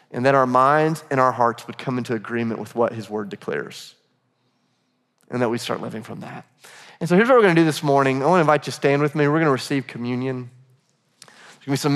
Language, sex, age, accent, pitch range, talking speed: English, male, 30-49, American, 130-155 Hz, 250 wpm